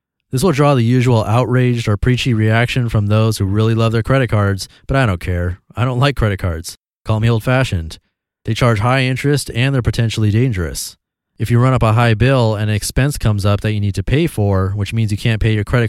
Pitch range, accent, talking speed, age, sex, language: 105-130 Hz, American, 235 wpm, 30-49, male, English